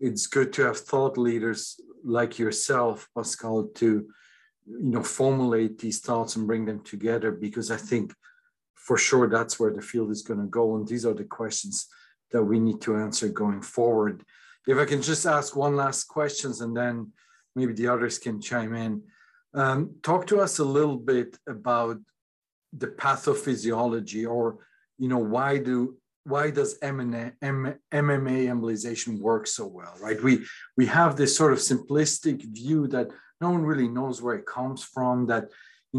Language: English